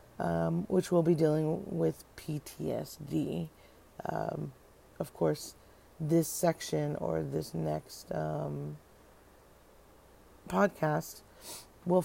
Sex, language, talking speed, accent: female, English, 90 wpm, American